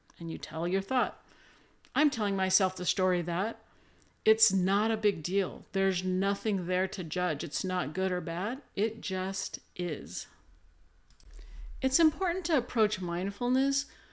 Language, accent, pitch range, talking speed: English, American, 185-240 Hz, 145 wpm